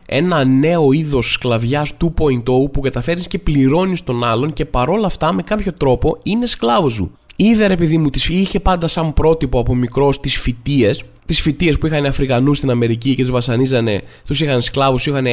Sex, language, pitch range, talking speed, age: male, Greek, 125-165 Hz, 180 wpm, 20-39